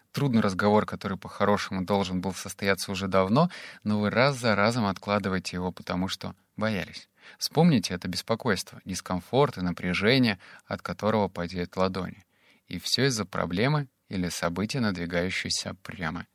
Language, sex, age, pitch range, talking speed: Russian, male, 30-49, 95-110 Hz, 135 wpm